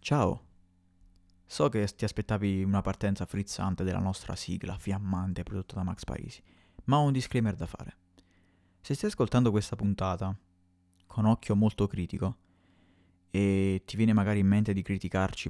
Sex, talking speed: male, 150 wpm